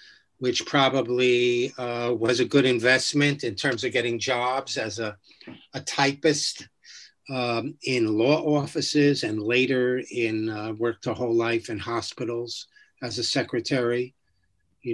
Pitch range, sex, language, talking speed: 115-145 Hz, male, English, 135 wpm